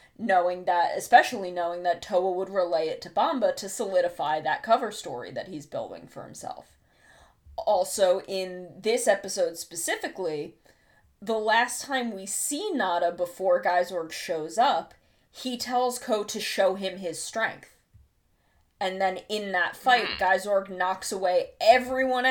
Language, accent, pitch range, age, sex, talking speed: English, American, 185-235 Hz, 20-39, female, 145 wpm